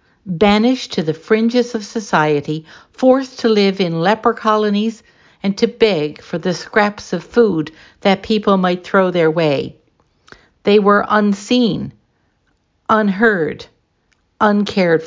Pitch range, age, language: 180-225 Hz, 60-79, English